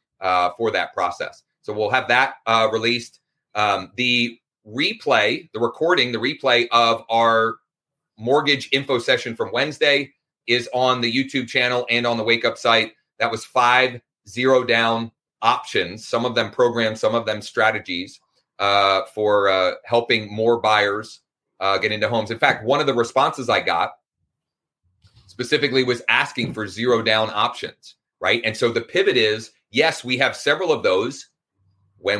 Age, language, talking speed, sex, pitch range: 30-49, English, 160 wpm, male, 105-130 Hz